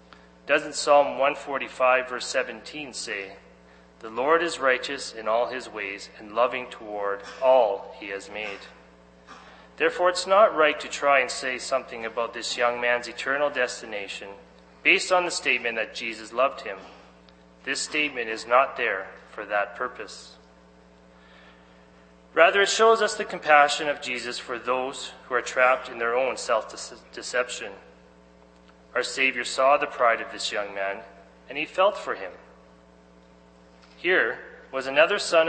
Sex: male